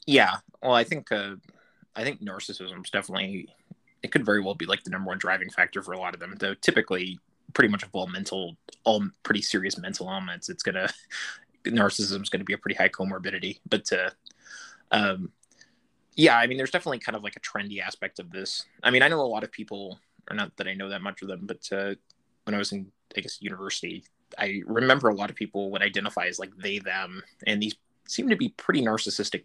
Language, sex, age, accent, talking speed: English, male, 20-39, American, 220 wpm